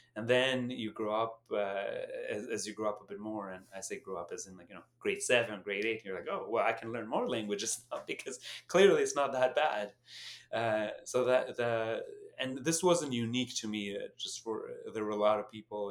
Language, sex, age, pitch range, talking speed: English, male, 30-49, 105-155 Hz, 240 wpm